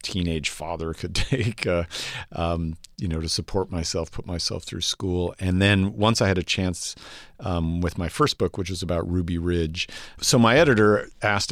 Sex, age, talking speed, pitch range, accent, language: male, 50-69, 190 wpm, 85-100 Hz, American, English